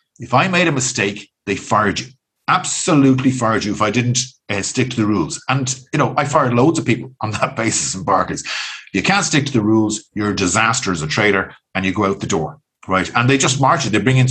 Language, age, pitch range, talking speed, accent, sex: English, 50-69, 105-135 Hz, 245 wpm, Irish, male